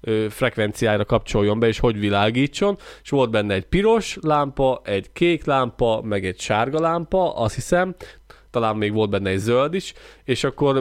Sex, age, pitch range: male, 20-39, 110-130 Hz